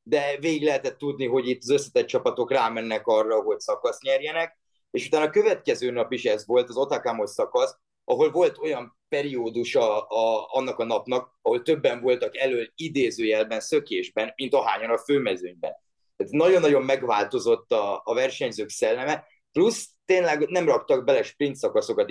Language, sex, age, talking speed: Hungarian, male, 30-49, 155 wpm